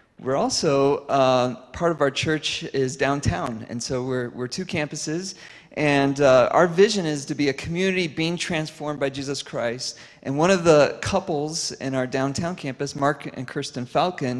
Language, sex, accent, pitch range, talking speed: English, male, American, 130-160 Hz, 175 wpm